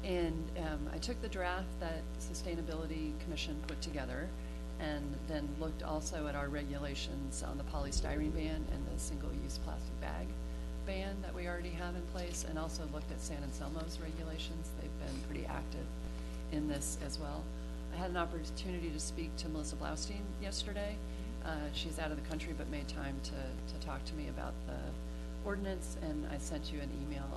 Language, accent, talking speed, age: English, American, 180 wpm, 40-59